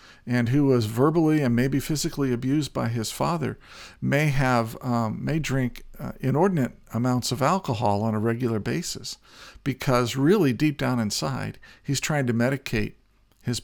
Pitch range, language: 120-145 Hz, English